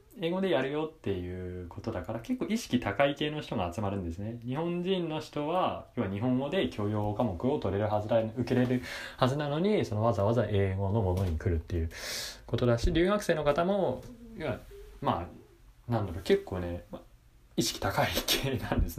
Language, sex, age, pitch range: Japanese, male, 20-39, 100-135 Hz